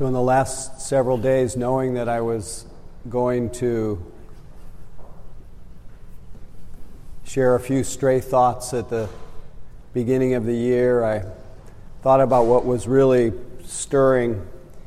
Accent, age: American, 50-69